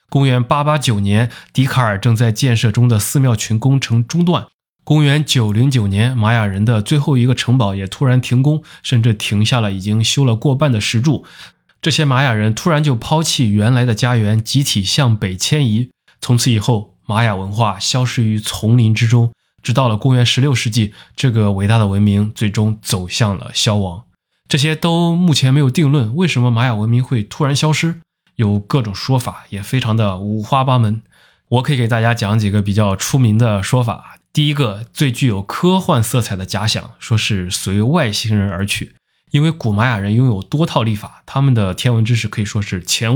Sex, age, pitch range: male, 20-39, 105-135 Hz